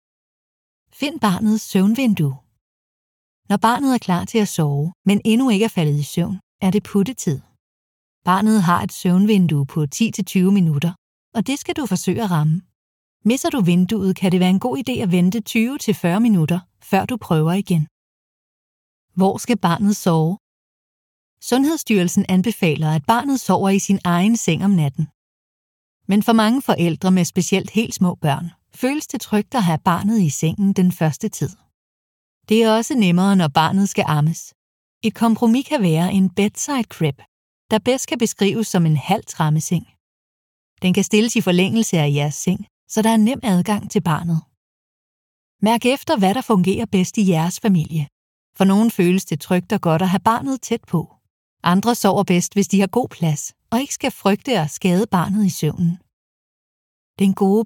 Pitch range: 165-220 Hz